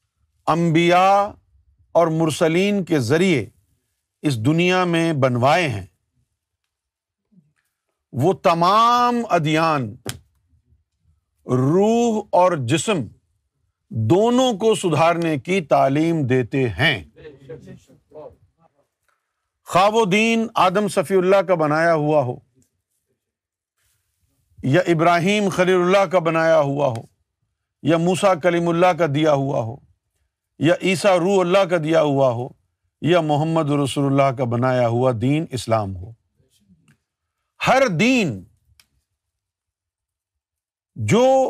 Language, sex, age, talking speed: Urdu, male, 50-69, 100 wpm